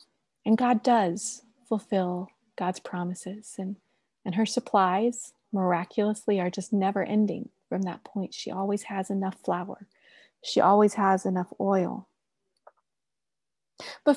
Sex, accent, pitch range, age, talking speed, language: female, American, 205-260 Hz, 30-49, 125 wpm, English